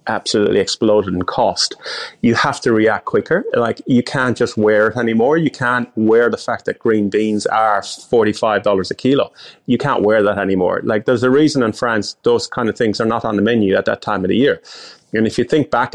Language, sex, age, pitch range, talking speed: English, male, 30-49, 110-150 Hz, 225 wpm